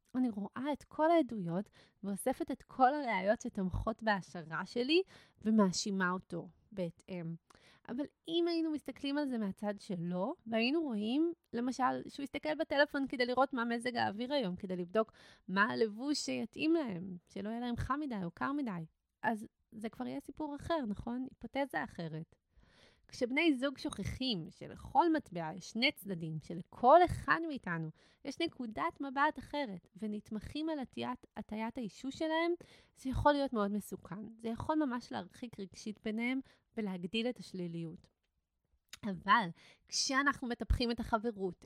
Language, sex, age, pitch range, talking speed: Hebrew, female, 20-39, 195-275 Hz, 140 wpm